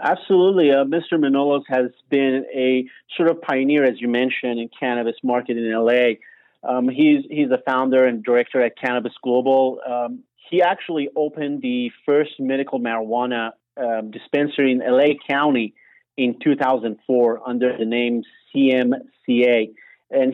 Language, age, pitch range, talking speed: English, 30-49, 120-140 Hz, 140 wpm